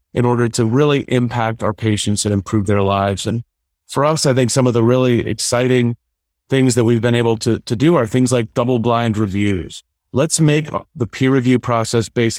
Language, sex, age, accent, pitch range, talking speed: English, male, 30-49, American, 110-130 Hz, 200 wpm